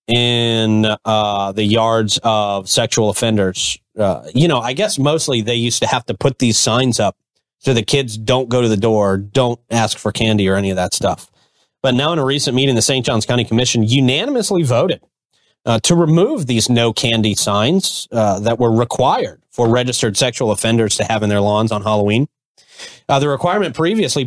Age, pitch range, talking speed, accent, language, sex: 30-49, 115-150 Hz, 195 wpm, American, English, male